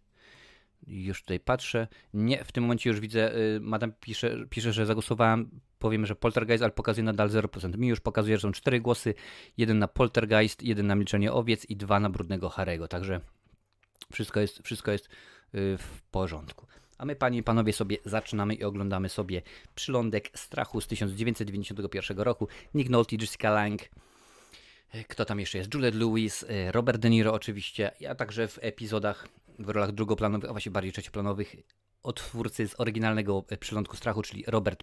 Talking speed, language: 165 wpm, Polish